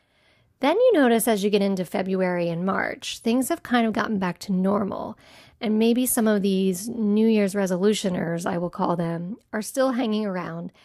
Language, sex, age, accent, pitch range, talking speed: English, female, 40-59, American, 190-235 Hz, 190 wpm